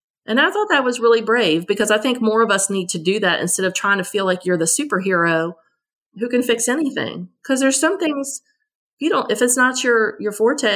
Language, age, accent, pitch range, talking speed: English, 30-49, American, 165-225 Hz, 235 wpm